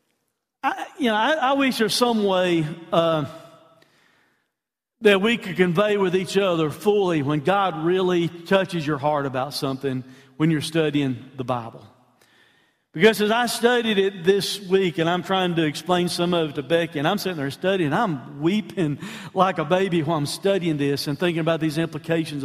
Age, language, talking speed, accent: 50-69, English, 180 wpm, American